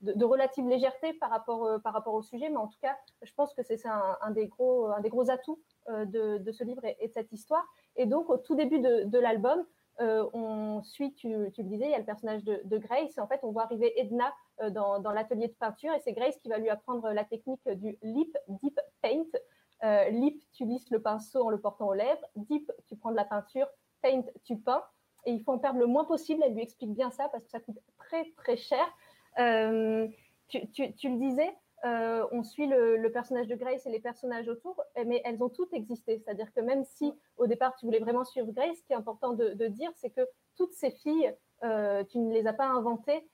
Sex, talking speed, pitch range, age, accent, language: female, 250 wpm, 220-275 Hz, 20-39, French, French